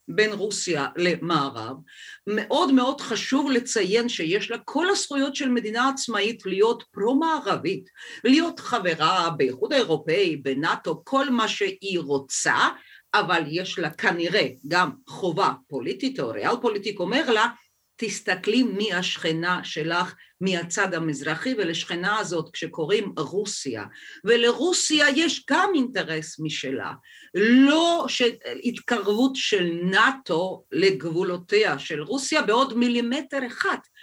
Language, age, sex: Hebrew, 50-69, female